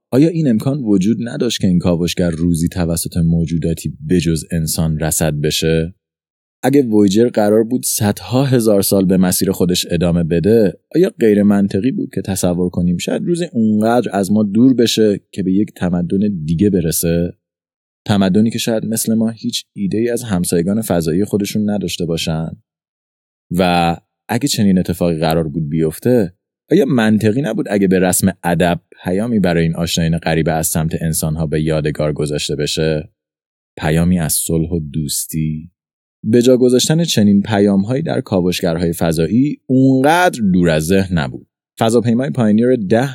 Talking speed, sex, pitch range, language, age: 150 wpm, male, 85-115 Hz, Persian, 20-39